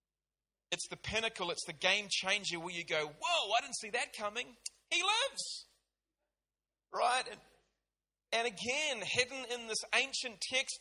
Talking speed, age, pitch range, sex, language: 145 wpm, 40-59, 145-220 Hz, male, English